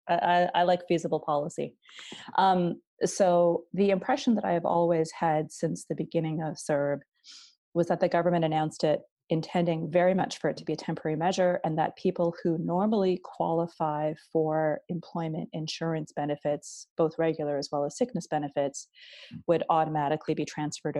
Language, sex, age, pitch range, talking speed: English, female, 30-49, 155-180 Hz, 160 wpm